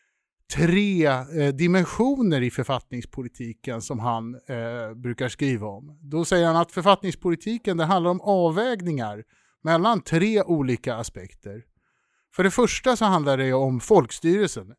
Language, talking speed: English, 120 wpm